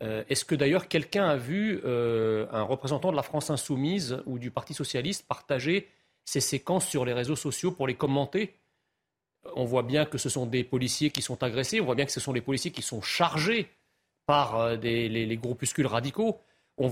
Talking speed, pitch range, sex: 205 wpm, 130-185 Hz, male